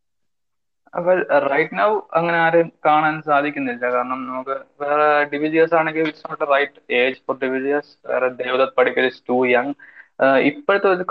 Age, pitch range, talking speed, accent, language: 20-39, 125-165 Hz, 95 wpm, Indian, English